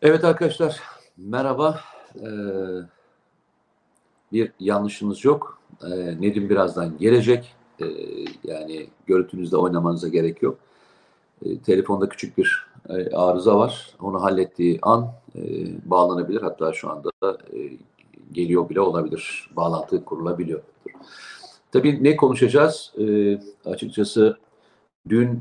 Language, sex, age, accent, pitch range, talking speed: Turkish, male, 50-69, native, 95-125 Hz, 105 wpm